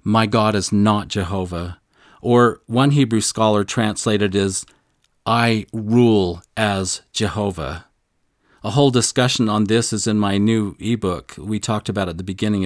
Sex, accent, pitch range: male, American, 105-130 Hz